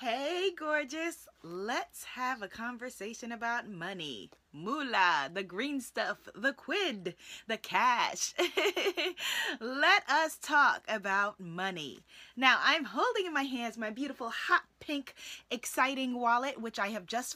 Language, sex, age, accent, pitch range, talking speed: English, female, 20-39, American, 200-275 Hz, 130 wpm